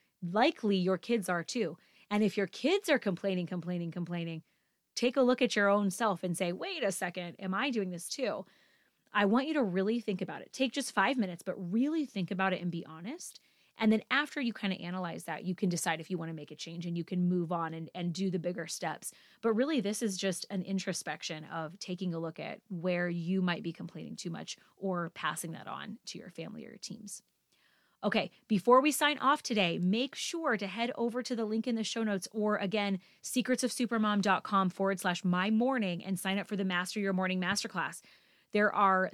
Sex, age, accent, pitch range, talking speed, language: female, 20-39, American, 180-245 Hz, 220 wpm, English